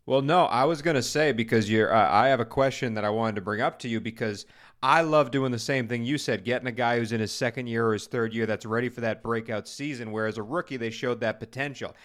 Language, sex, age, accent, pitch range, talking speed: English, male, 30-49, American, 120-150 Hz, 280 wpm